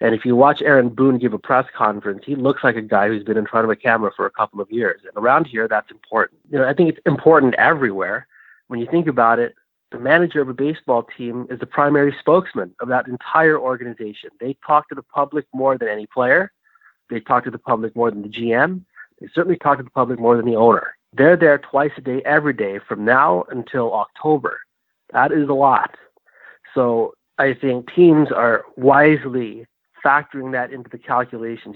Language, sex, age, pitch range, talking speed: English, male, 30-49, 115-140 Hz, 210 wpm